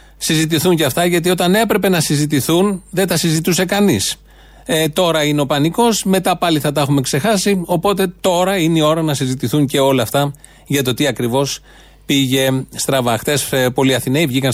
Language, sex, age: Greek, male, 30-49